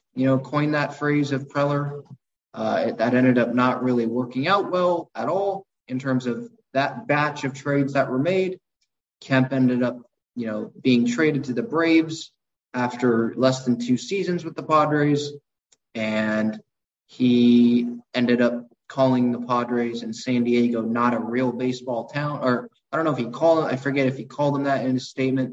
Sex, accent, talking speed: male, American, 185 wpm